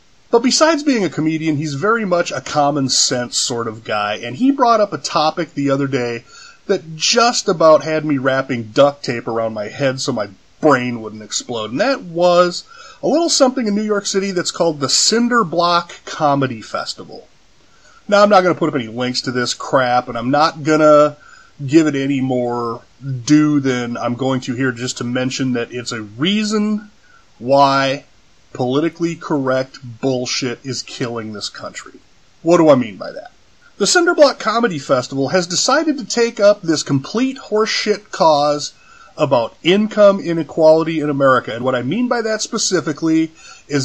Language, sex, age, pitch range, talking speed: English, male, 30-49, 130-185 Hz, 180 wpm